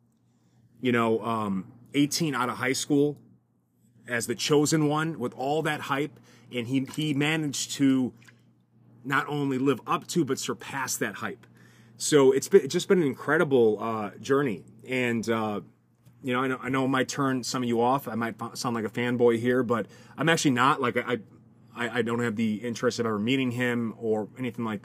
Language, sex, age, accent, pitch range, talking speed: English, male, 30-49, American, 115-130 Hz, 195 wpm